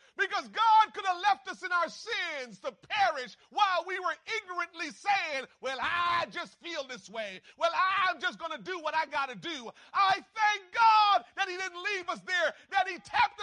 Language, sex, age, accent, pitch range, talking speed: English, male, 40-59, American, 235-375 Hz, 200 wpm